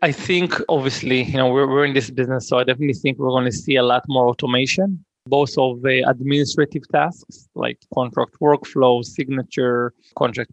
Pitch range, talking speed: 120-140 Hz, 180 wpm